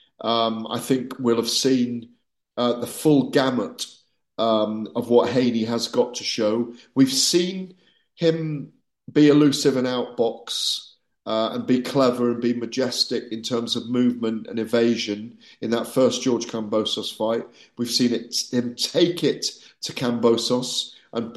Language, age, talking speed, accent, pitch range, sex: English, 50-69, 145 wpm, British, 115-130 Hz, male